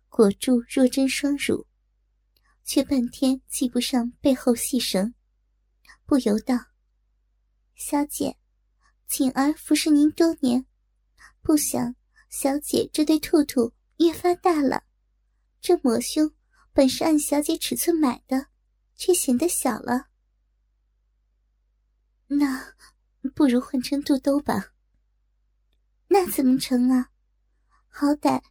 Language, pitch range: Chinese, 245-295 Hz